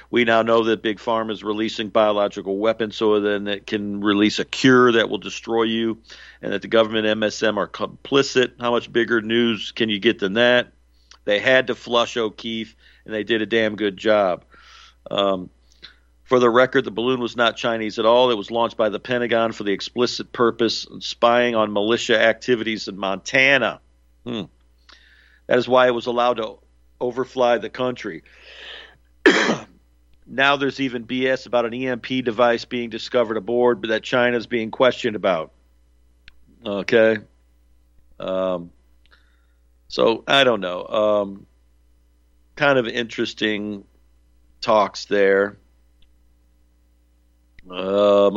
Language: English